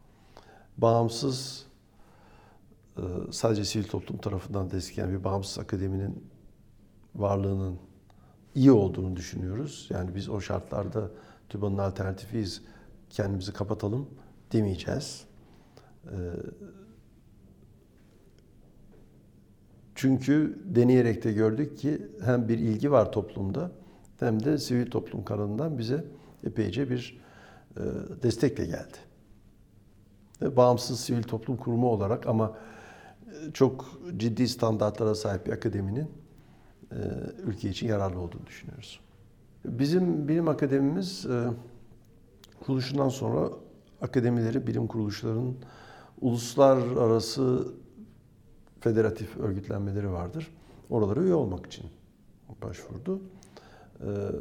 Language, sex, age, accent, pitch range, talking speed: Turkish, male, 60-79, native, 100-125 Hz, 85 wpm